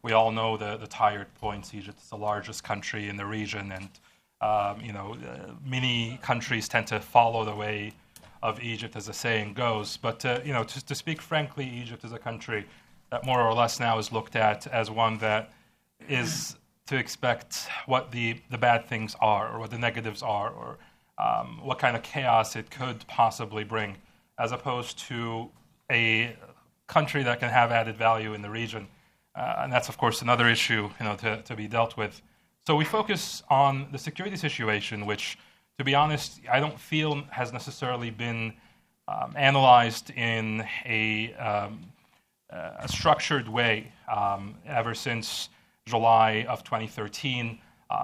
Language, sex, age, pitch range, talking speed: English, male, 30-49, 110-125 Hz, 170 wpm